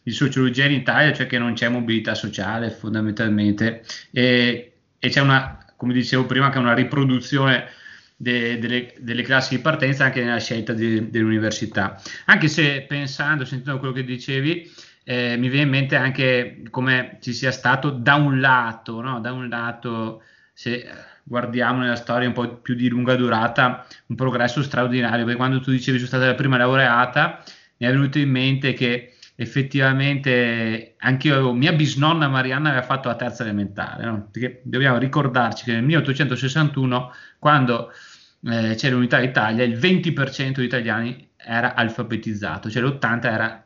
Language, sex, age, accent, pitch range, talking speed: Italian, male, 30-49, native, 120-140 Hz, 165 wpm